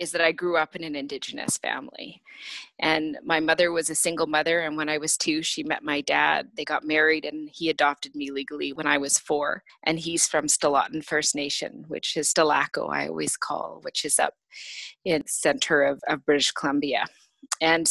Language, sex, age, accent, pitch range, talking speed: English, female, 30-49, American, 155-180 Hz, 200 wpm